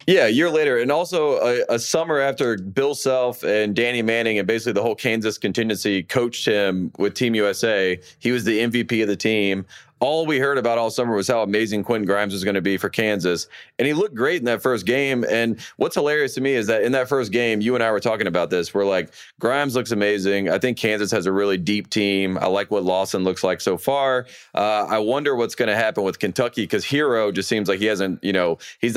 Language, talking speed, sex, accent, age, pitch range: English, 240 wpm, male, American, 30-49, 95-115 Hz